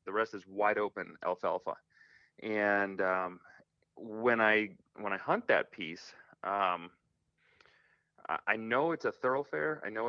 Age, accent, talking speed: 30-49, American, 135 wpm